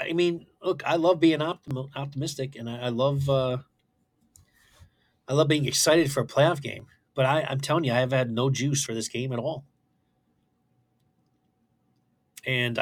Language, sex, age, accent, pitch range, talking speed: English, male, 30-49, American, 115-140 Hz, 175 wpm